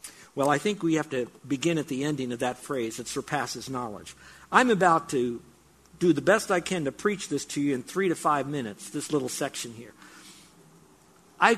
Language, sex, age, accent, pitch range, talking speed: English, male, 50-69, American, 150-205 Hz, 200 wpm